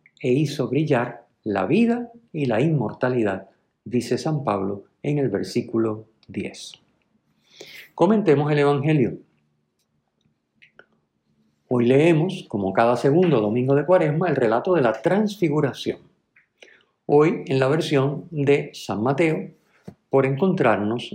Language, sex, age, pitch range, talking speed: Spanish, male, 50-69, 115-165 Hz, 115 wpm